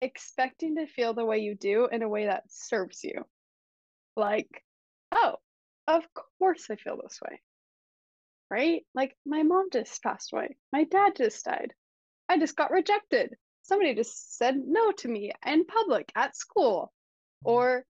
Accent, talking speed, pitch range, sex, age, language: American, 155 wpm, 220-310 Hz, female, 10-29, English